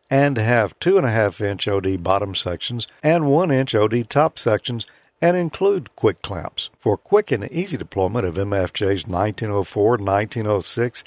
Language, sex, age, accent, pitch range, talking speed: English, male, 50-69, American, 105-145 Hz, 155 wpm